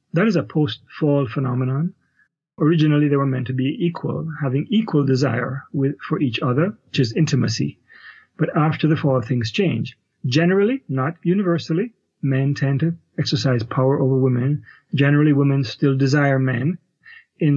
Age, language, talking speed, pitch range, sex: 30-49, English, 145 wpm, 130-155 Hz, male